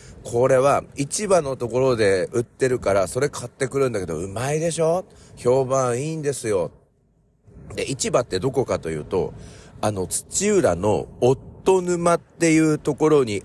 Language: Japanese